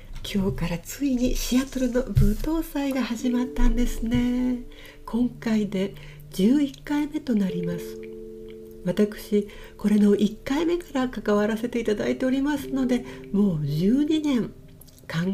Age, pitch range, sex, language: 60-79, 175-255 Hz, female, Japanese